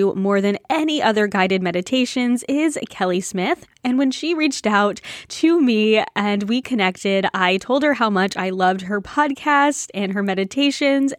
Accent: American